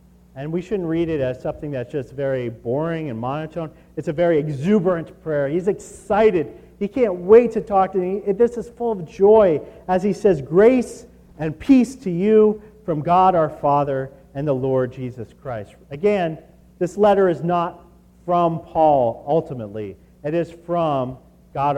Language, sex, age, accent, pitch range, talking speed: English, male, 40-59, American, 130-190 Hz, 170 wpm